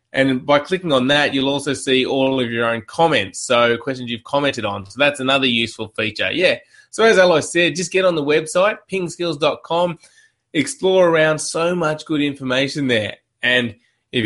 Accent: Australian